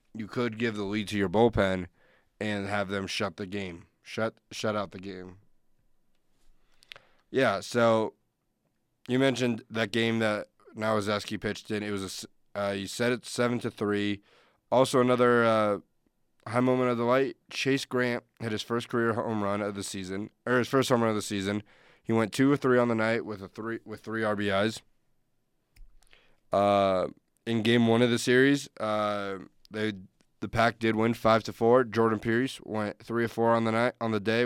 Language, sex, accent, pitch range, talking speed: English, male, American, 105-120 Hz, 190 wpm